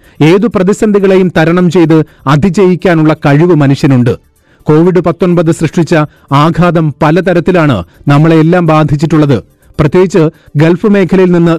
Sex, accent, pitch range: male, native, 145-180 Hz